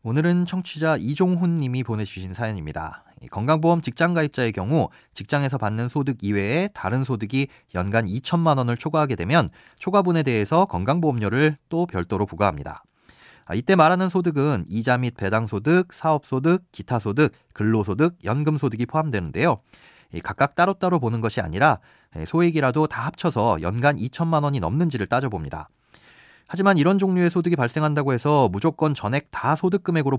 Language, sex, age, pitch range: Korean, male, 30-49, 110-165 Hz